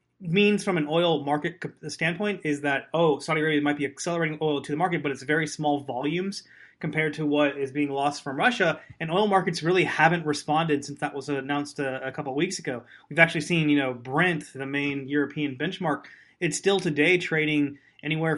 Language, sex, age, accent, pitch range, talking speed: English, male, 20-39, American, 145-170 Hz, 200 wpm